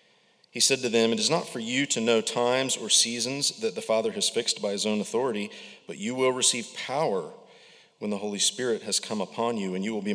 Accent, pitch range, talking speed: American, 100-150 Hz, 235 wpm